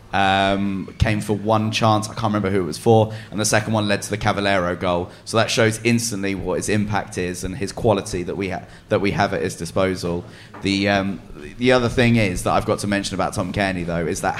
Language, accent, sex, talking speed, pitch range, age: English, British, male, 240 wpm, 100-125 Hz, 30-49